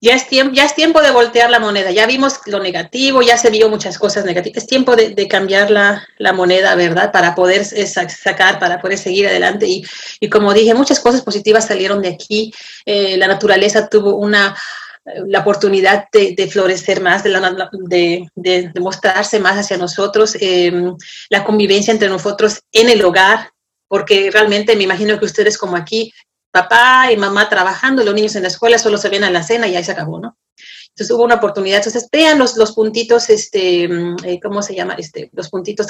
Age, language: 30-49, Spanish